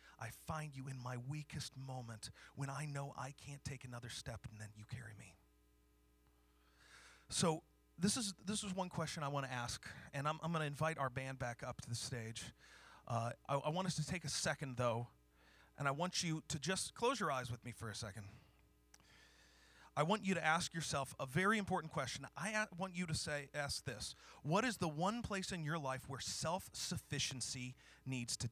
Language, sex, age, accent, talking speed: English, male, 30-49, American, 205 wpm